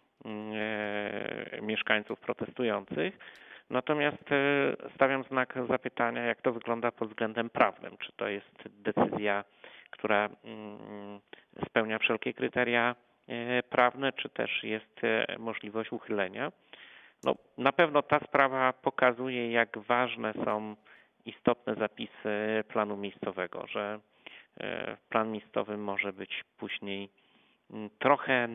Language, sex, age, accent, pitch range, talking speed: Polish, male, 30-49, native, 105-125 Hz, 95 wpm